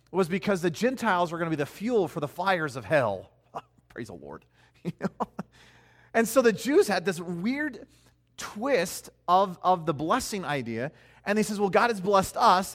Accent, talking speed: American, 185 wpm